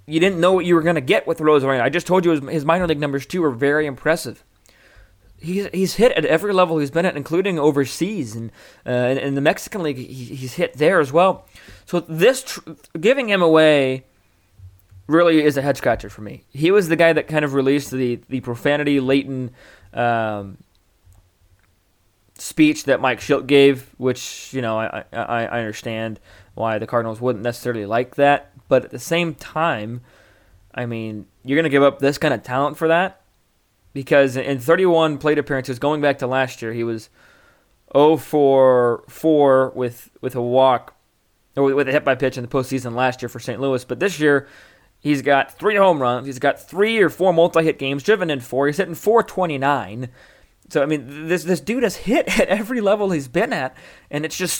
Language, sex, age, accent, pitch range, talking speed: English, male, 20-39, American, 125-165 Hz, 200 wpm